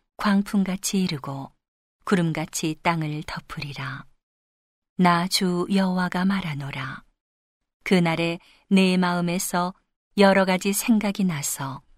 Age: 40-59